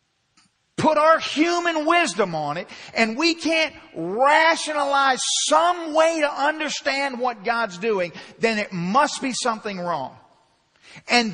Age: 50-69